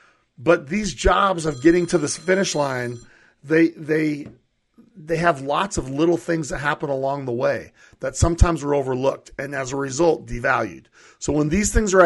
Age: 40-59